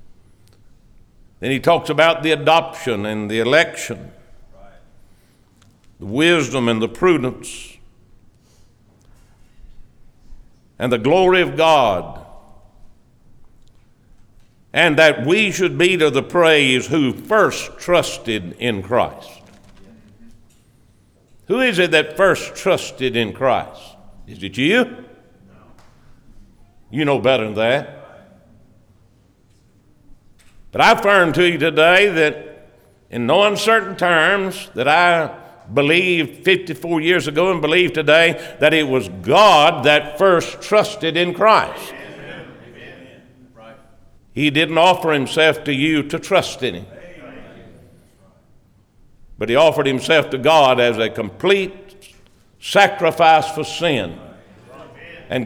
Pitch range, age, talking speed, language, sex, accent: 115-165 Hz, 60-79, 110 wpm, English, male, American